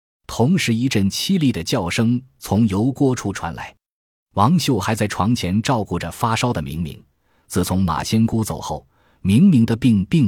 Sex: male